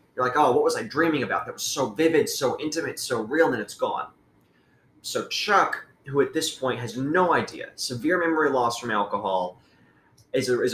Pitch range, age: 105-145 Hz, 20-39